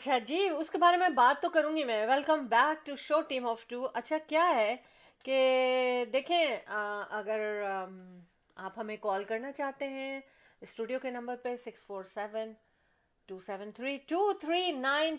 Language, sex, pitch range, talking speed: Urdu, female, 215-270 Hz, 170 wpm